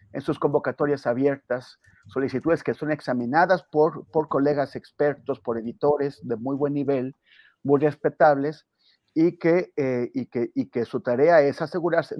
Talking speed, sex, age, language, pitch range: 150 wpm, male, 40-59, Spanish, 125-155 Hz